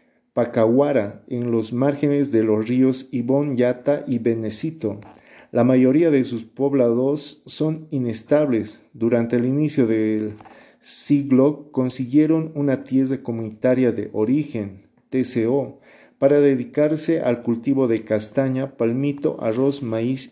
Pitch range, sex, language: 115-140 Hz, male, Spanish